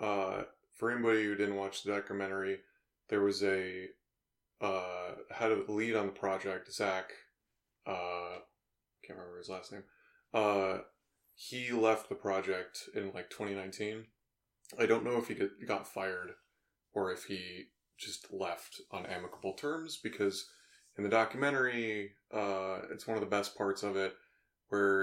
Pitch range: 95-105 Hz